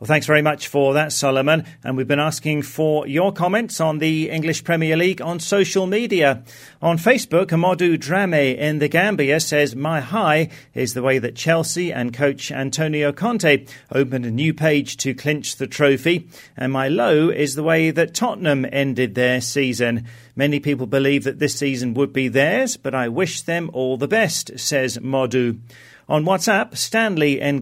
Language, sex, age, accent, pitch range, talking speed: English, male, 40-59, British, 130-165 Hz, 180 wpm